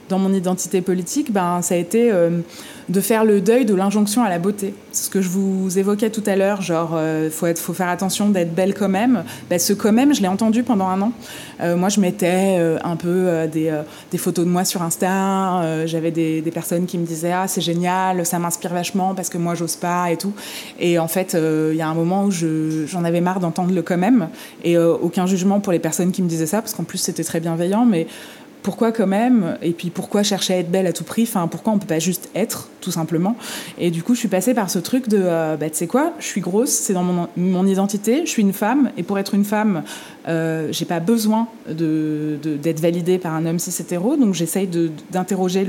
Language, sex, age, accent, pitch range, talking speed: French, female, 20-39, French, 170-210 Hz, 255 wpm